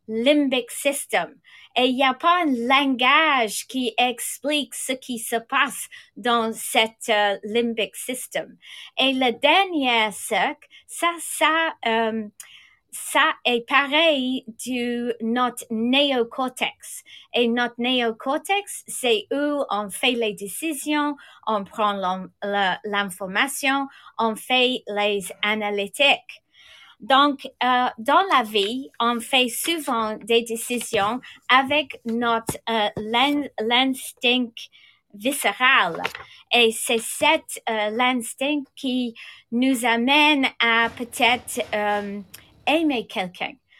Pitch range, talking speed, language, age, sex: 225-275 Hz, 110 wpm, English, 30-49, female